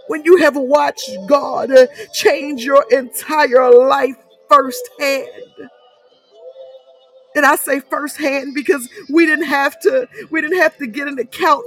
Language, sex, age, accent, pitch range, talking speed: English, female, 50-69, American, 265-295 Hz, 130 wpm